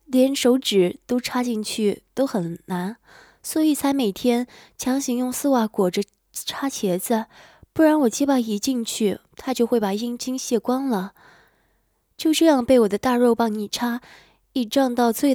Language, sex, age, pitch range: Chinese, female, 20-39, 215-265 Hz